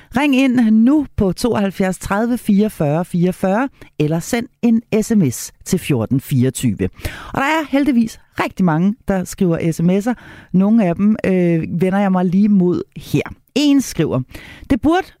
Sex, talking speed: female, 145 wpm